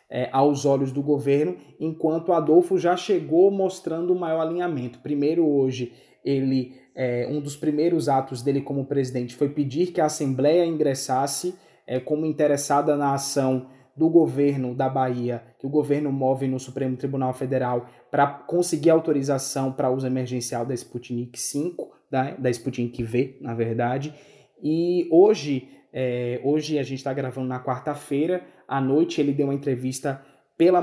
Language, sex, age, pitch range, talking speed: Portuguese, male, 20-39, 130-155 Hz, 155 wpm